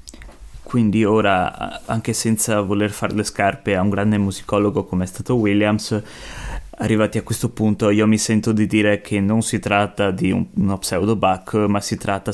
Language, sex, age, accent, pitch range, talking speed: Italian, male, 20-39, native, 100-115 Hz, 175 wpm